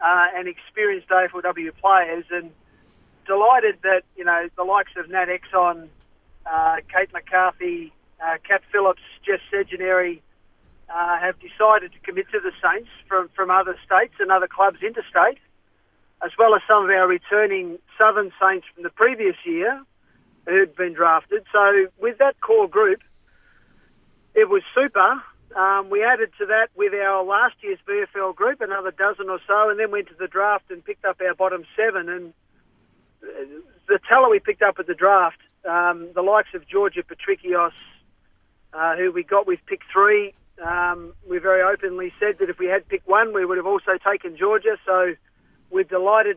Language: English